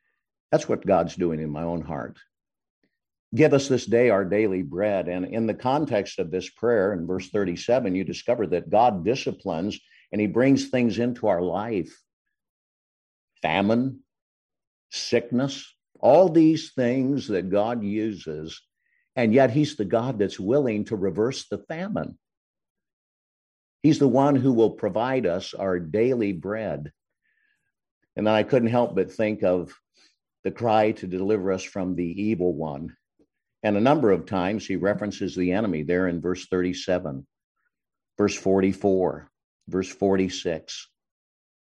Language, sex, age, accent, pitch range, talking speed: English, male, 50-69, American, 90-120 Hz, 140 wpm